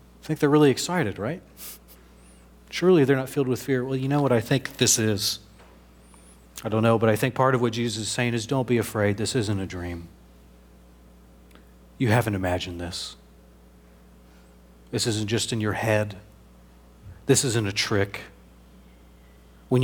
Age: 40-59